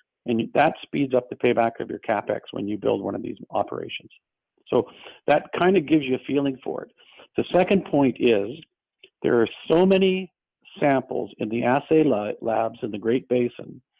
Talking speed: 185 wpm